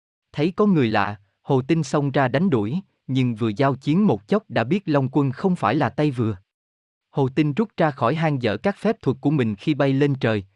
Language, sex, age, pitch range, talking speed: Vietnamese, male, 20-39, 120-165 Hz, 235 wpm